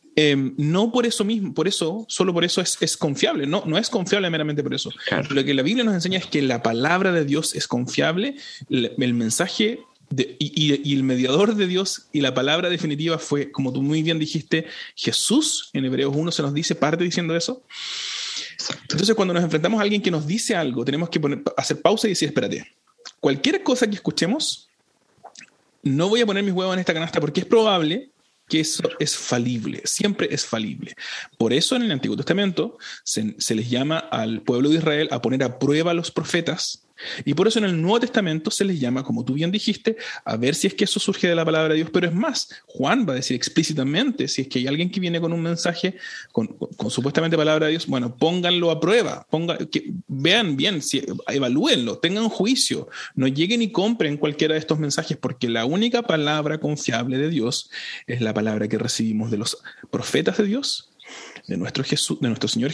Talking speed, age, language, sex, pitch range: 210 wpm, 30-49, Spanish, male, 140-200 Hz